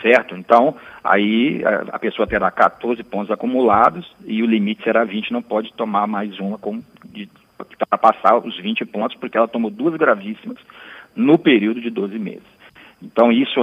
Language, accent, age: Portuguese, Brazilian, 40-59